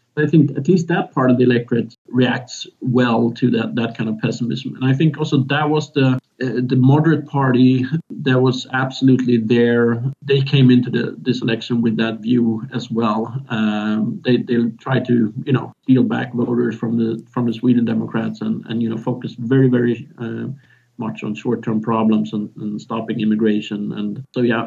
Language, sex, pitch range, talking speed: English, male, 115-140 Hz, 190 wpm